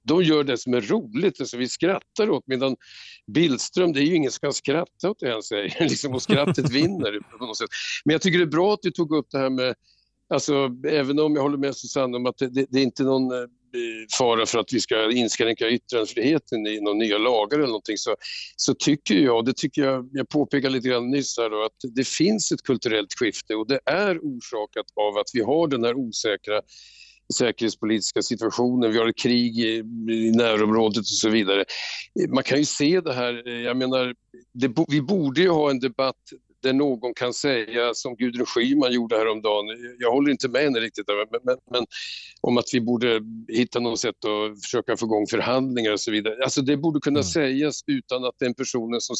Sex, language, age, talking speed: male, Swedish, 50-69, 210 wpm